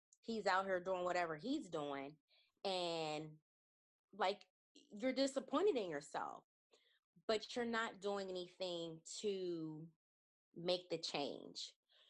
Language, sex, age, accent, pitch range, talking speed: English, female, 20-39, American, 160-205 Hz, 110 wpm